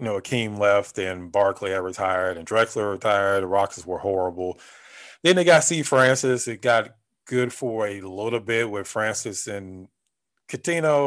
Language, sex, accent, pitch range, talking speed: English, male, American, 100-125 Hz, 170 wpm